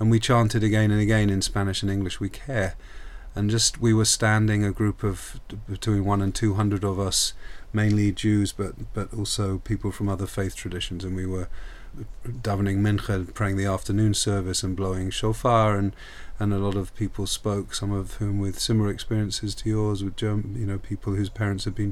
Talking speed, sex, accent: 205 wpm, male, British